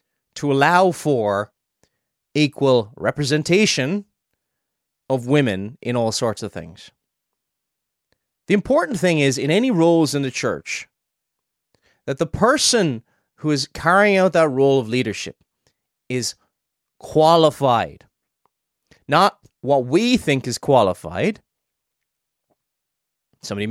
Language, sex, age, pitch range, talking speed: English, male, 30-49, 115-155 Hz, 105 wpm